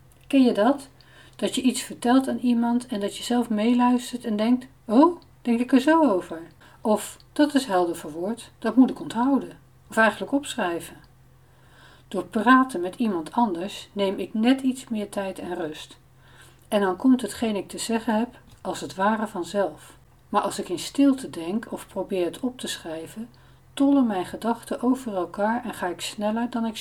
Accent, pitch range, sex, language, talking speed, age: Dutch, 170-230 Hz, female, Dutch, 185 wpm, 40-59